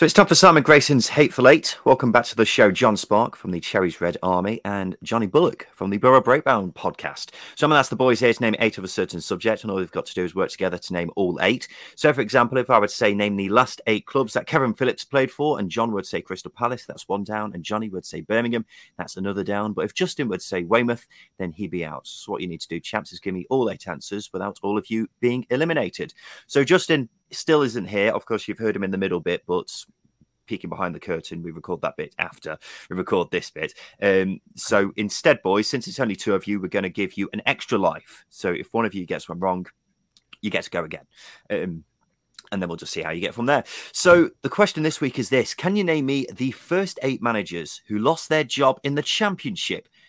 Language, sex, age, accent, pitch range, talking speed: English, male, 30-49, British, 95-135 Hz, 255 wpm